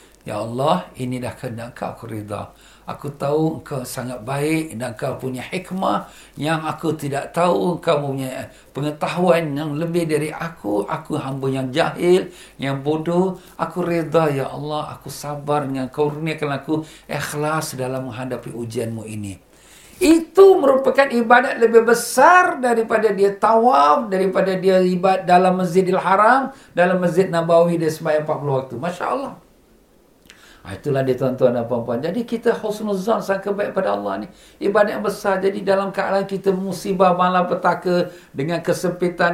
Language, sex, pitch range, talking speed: Malay, male, 140-185 Hz, 150 wpm